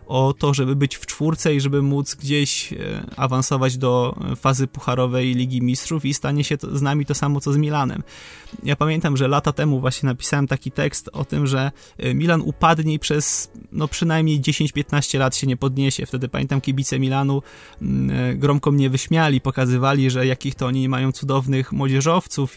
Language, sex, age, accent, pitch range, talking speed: Polish, male, 20-39, native, 130-150 Hz, 175 wpm